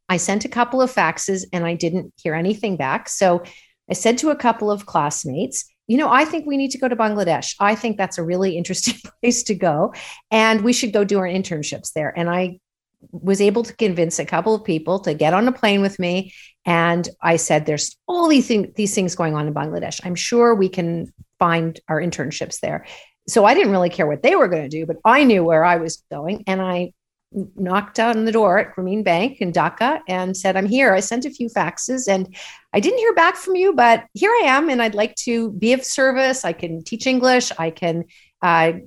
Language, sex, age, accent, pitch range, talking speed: English, female, 50-69, American, 175-235 Hz, 225 wpm